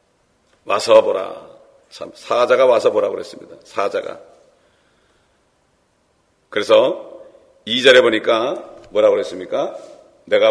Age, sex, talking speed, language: 40-59, male, 80 wpm, English